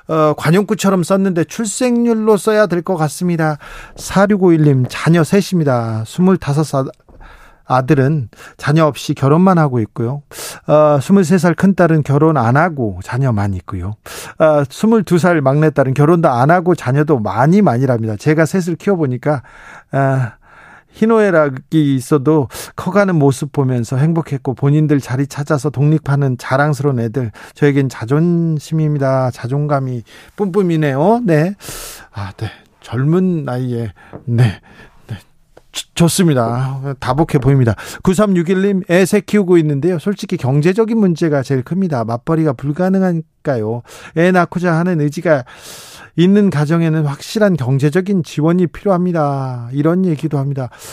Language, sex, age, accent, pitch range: Korean, male, 40-59, native, 140-180 Hz